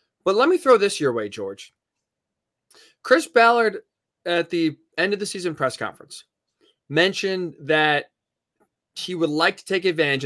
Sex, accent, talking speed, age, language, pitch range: male, American, 150 wpm, 20-39, English, 145-190 Hz